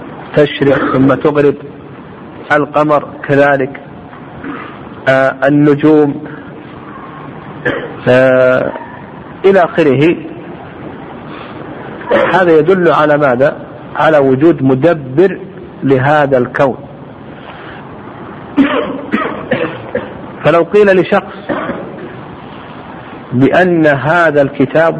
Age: 50-69